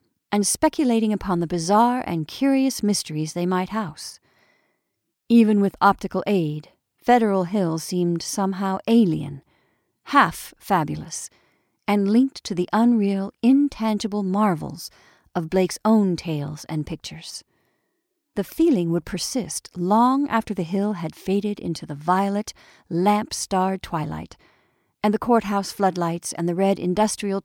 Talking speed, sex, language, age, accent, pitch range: 125 wpm, female, English, 40-59, American, 180-225 Hz